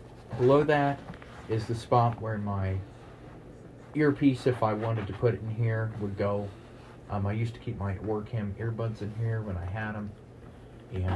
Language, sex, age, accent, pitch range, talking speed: English, male, 30-49, American, 100-120 Hz, 175 wpm